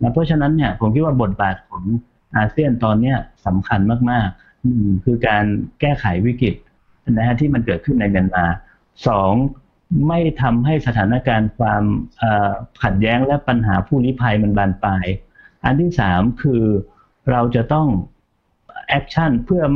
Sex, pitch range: male, 100-130 Hz